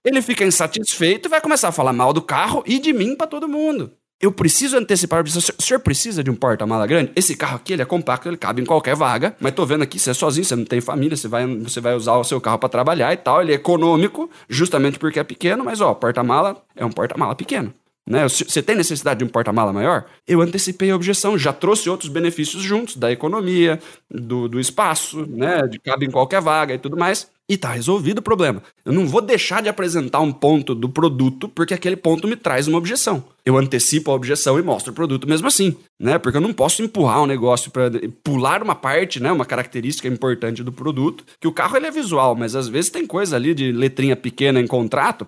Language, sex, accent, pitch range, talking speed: Portuguese, male, Brazilian, 130-190 Hz, 235 wpm